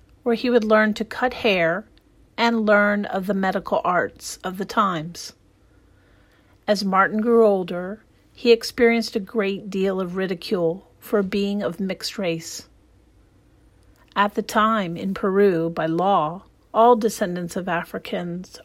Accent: American